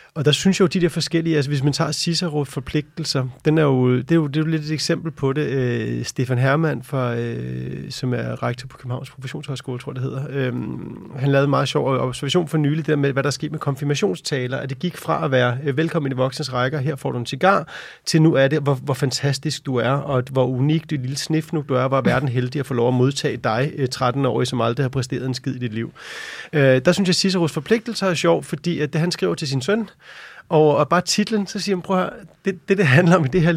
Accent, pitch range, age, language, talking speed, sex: native, 135-165 Hz, 30-49, Danish, 265 wpm, male